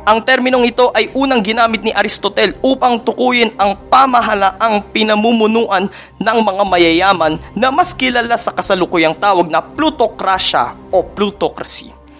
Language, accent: Filipino, native